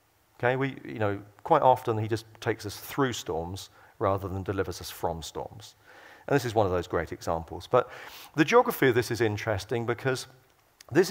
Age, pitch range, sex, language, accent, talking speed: 40-59, 105-125 Hz, male, English, British, 190 wpm